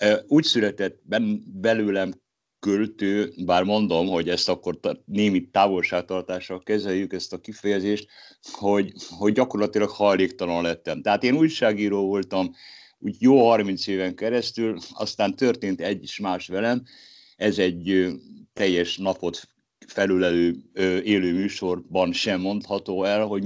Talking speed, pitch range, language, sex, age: 120 wpm, 90-110 Hz, Hungarian, male, 60-79